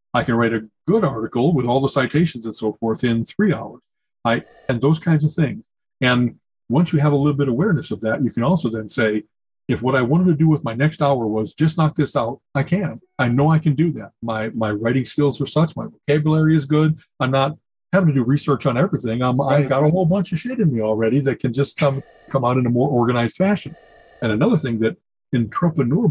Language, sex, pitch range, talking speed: English, male, 115-155 Hz, 245 wpm